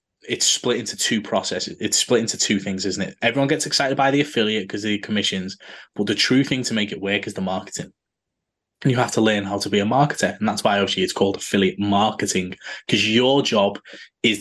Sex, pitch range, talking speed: male, 100-115 Hz, 230 wpm